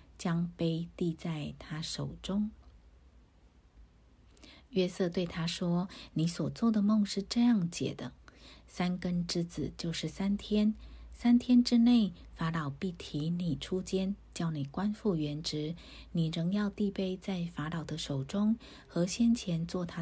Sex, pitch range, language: female, 155-195 Hz, Chinese